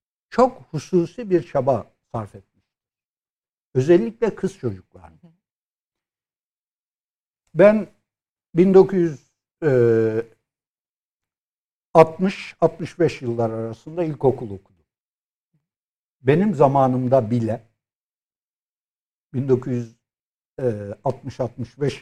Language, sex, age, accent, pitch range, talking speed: Turkish, male, 60-79, native, 120-175 Hz, 50 wpm